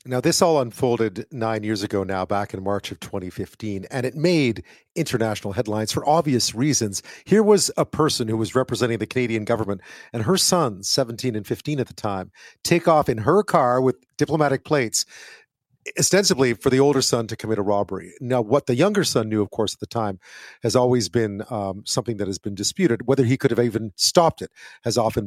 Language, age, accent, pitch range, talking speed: English, 40-59, American, 115-150 Hz, 205 wpm